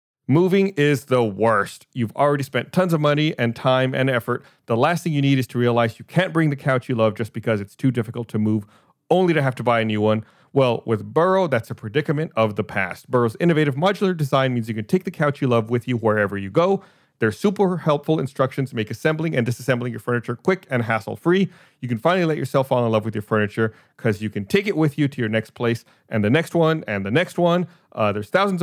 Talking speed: 245 wpm